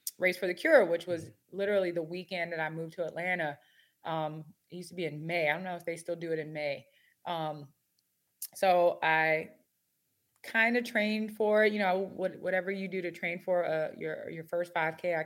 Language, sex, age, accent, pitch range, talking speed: English, female, 20-39, American, 165-200 Hz, 205 wpm